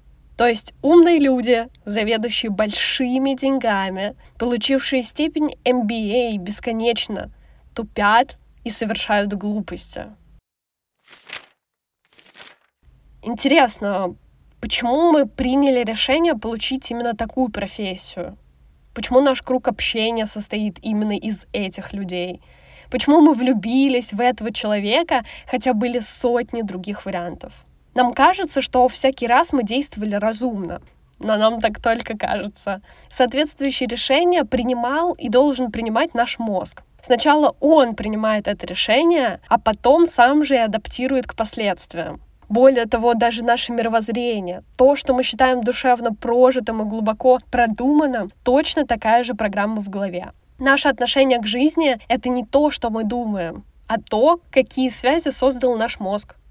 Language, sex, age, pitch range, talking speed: Russian, female, 10-29, 215-260 Hz, 120 wpm